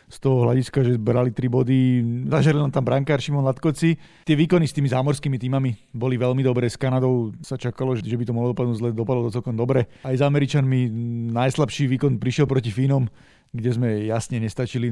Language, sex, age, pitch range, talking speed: Slovak, male, 40-59, 120-135 Hz, 190 wpm